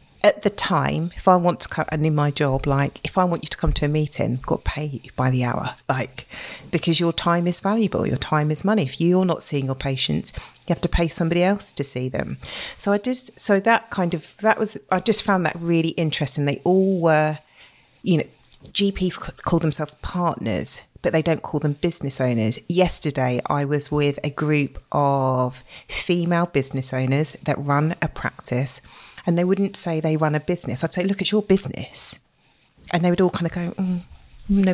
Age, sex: 40-59, female